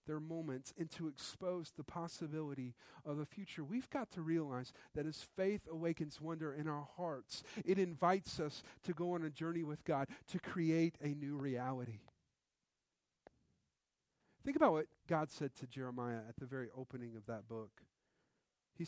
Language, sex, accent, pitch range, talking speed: English, male, American, 130-185 Hz, 160 wpm